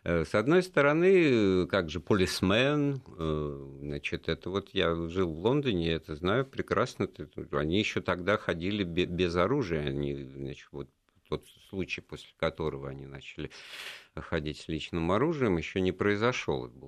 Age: 50-69